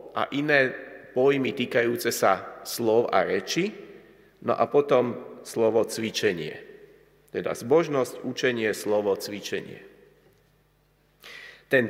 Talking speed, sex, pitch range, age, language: 95 wpm, male, 130-150 Hz, 30-49, Slovak